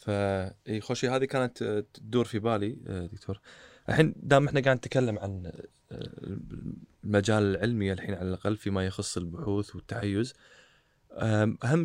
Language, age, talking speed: Arabic, 20-39, 120 wpm